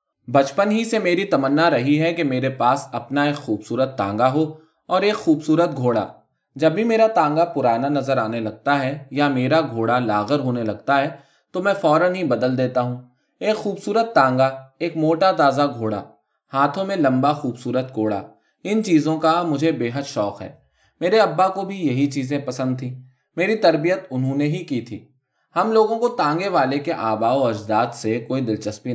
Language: Urdu